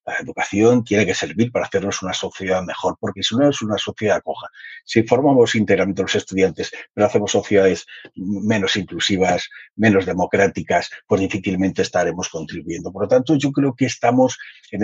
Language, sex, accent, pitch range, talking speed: Spanish, male, Spanish, 100-135 Hz, 165 wpm